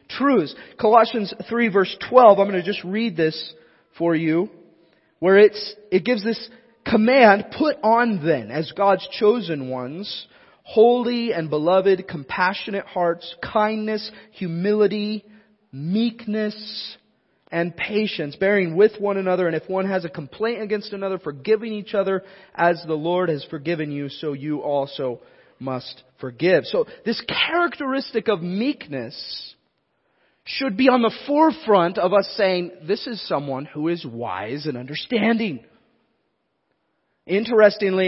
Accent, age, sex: American, 30-49, male